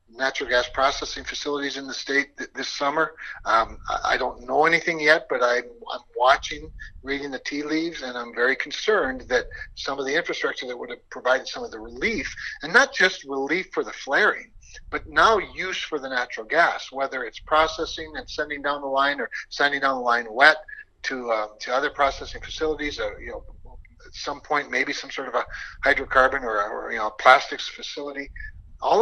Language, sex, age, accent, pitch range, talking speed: English, male, 60-79, American, 130-160 Hz, 195 wpm